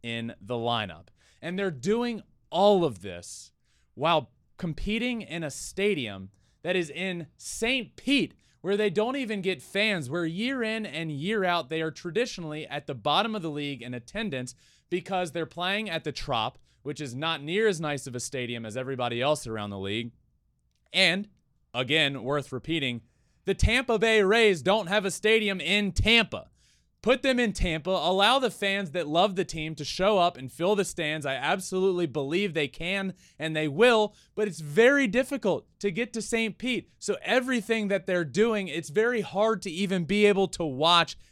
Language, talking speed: English, 185 wpm